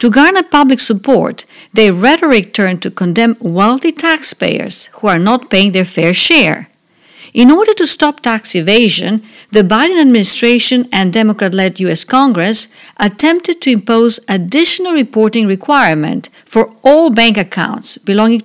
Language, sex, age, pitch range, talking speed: English, female, 50-69, 200-285 Hz, 135 wpm